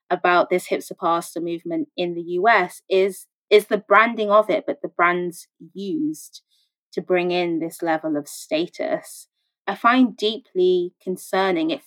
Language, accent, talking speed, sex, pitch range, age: English, British, 150 wpm, female, 175-215 Hz, 20-39